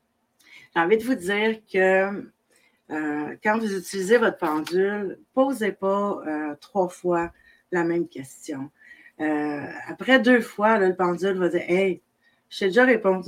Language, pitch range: French, 175-225 Hz